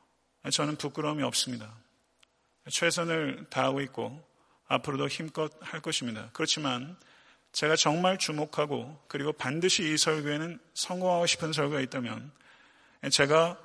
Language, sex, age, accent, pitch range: Korean, male, 40-59, native, 135-160 Hz